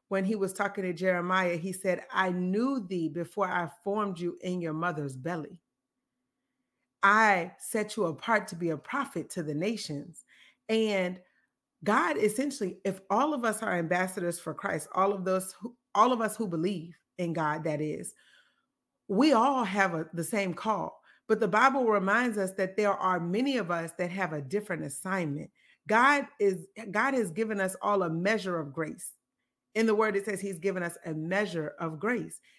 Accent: American